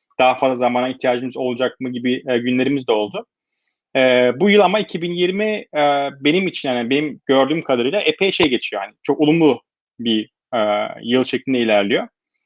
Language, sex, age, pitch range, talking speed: Turkish, male, 30-49, 125-155 Hz, 165 wpm